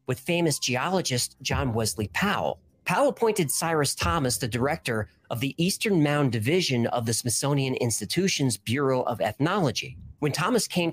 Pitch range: 120-170 Hz